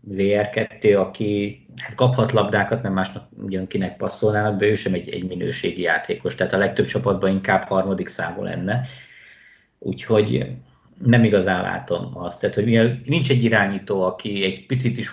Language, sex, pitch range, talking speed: Hungarian, male, 95-110 Hz, 150 wpm